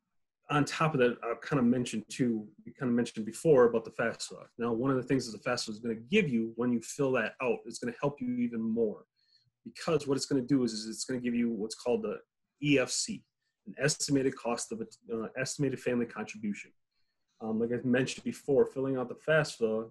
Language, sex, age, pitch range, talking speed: English, male, 30-49, 115-140 Hz, 215 wpm